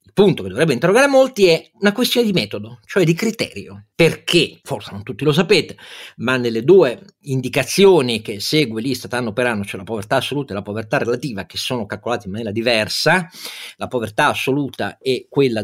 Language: Italian